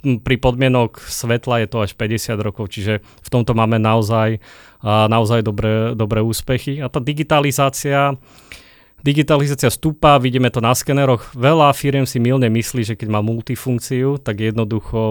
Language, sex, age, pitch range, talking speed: Slovak, male, 30-49, 110-130 Hz, 145 wpm